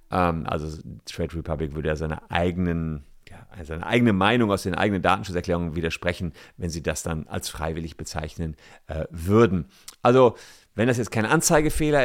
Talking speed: 155 wpm